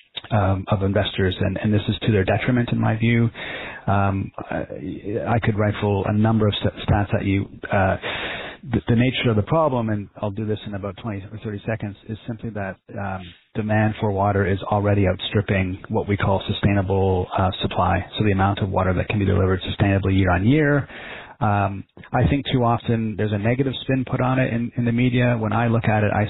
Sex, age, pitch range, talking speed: male, 30-49, 100-115 Hz, 205 wpm